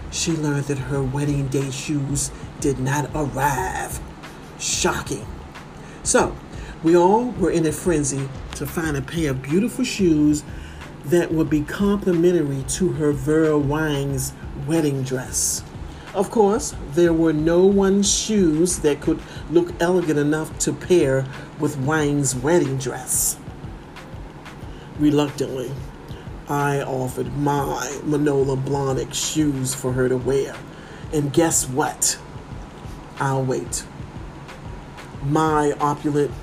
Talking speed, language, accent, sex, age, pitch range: 115 wpm, English, American, male, 50-69, 135-165 Hz